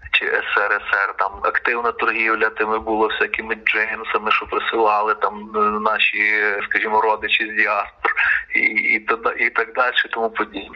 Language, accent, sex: Ukrainian, native, male